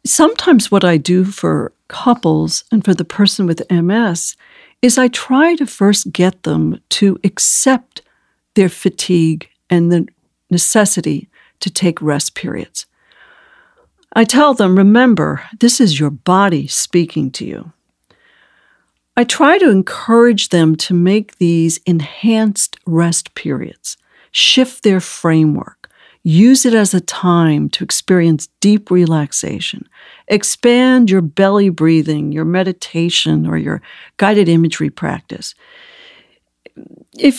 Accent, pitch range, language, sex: American, 165-230 Hz, English, female